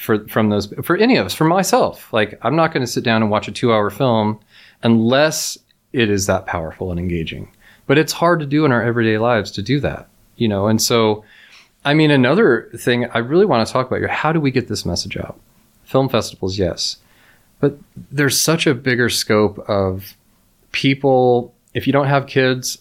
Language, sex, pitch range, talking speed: English, male, 105-135 Hz, 200 wpm